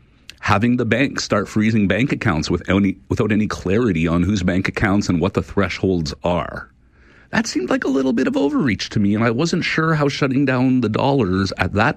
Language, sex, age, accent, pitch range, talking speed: English, male, 50-69, American, 95-125 Hz, 205 wpm